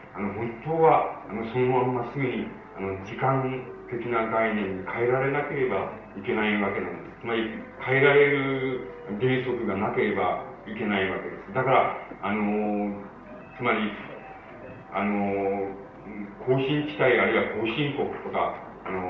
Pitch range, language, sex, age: 100-135 Hz, Japanese, male, 40-59